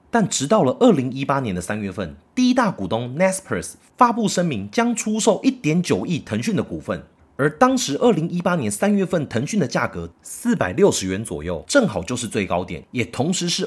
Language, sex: Chinese, male